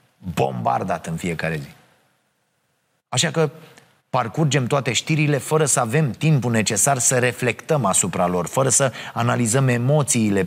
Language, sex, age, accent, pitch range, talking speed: Romanian, male, 30-49, native, 120-155 Hz, 125 wpm